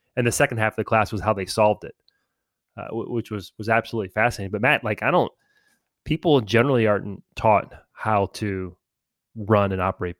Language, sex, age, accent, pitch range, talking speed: English, male, 30-49, American, 100-125 Hz, 190 wpm